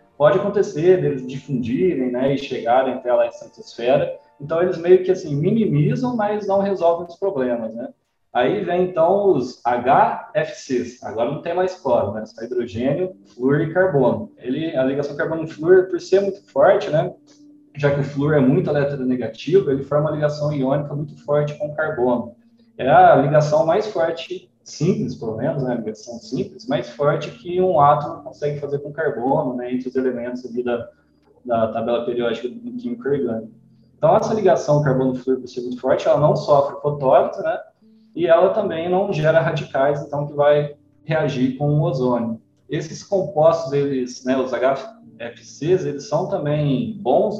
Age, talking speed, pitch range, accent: 20-39, 170 wpm, 130-180 Hz, Brazilian